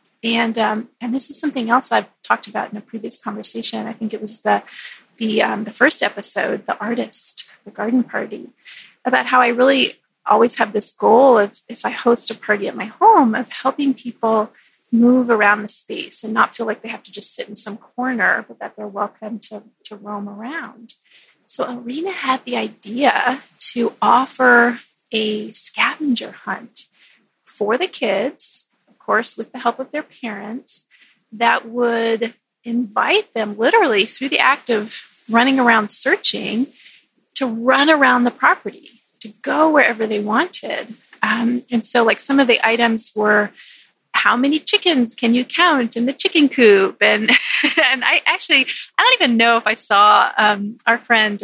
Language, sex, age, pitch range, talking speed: English, female, 30-49, 220-265 Hz, 170 wpm